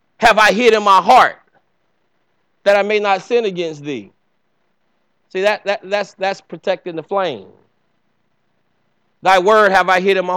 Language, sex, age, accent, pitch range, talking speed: English, male, 30-49, American, 165-200 Hz, 160 wpm